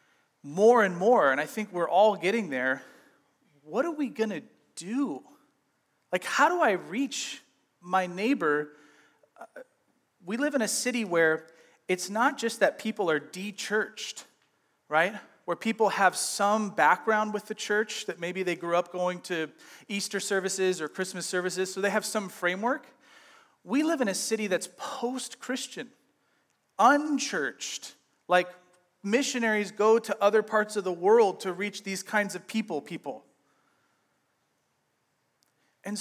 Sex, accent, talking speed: male, American, 145 wpm